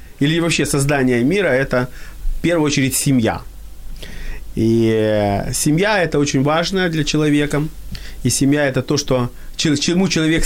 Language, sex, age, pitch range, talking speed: Ukrainian, male, 30-49, 130-160 Hz, 130 wpm